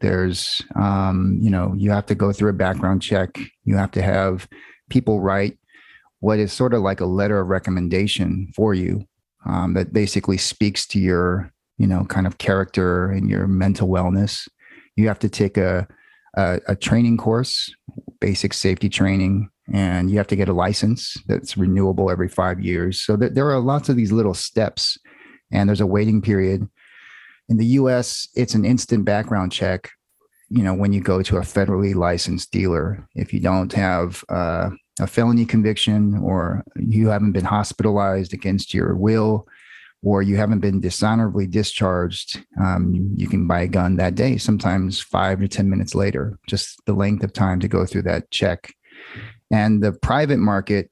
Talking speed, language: 175 wpm, English